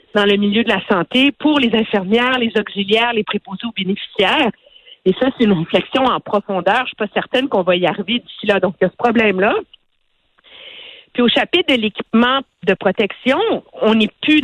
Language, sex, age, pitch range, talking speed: French, female, 50-69, 185-235 Hz, 200 wpm